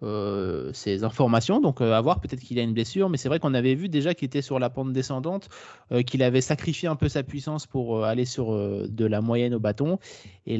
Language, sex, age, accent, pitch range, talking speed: French, male, 20-39, French, 110-145 Hz, 250 wpm